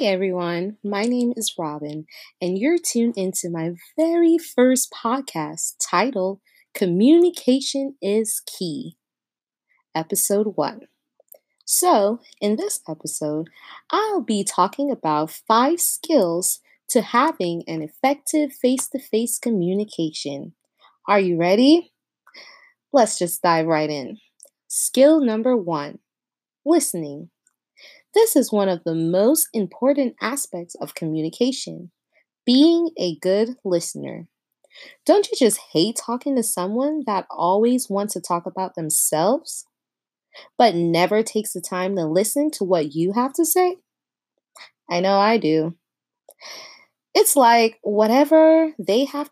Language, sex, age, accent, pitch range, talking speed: English, female, 20-39, American, 180-280 Hz, 120 wpm